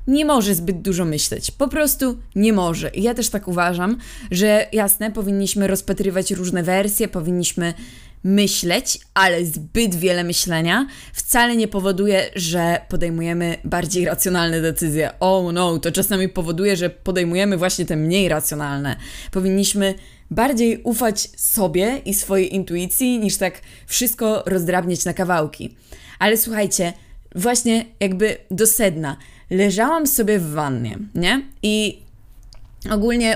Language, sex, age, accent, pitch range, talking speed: Polish, female, 20-39, native, 180-225 Hz, 130 wpm